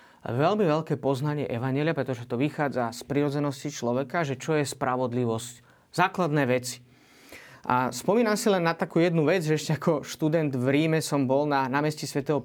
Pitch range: 130-155 Hz